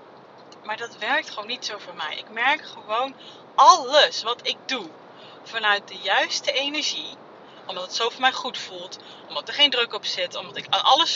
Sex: female